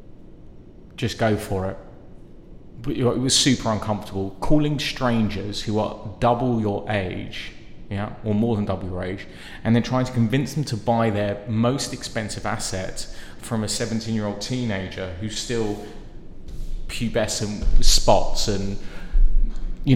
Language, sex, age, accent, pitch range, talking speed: English, male, 30-49, British, 100-120 Hz, 135 wpm